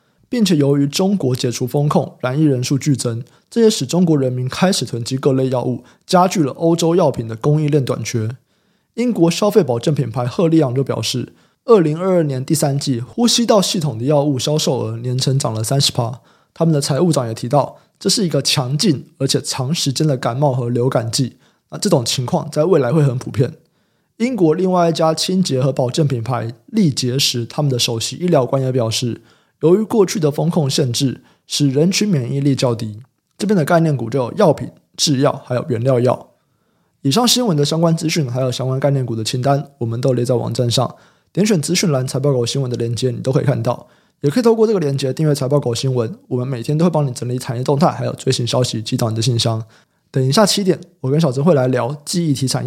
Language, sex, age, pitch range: Chinese, male, 20-39, 125-165 Hz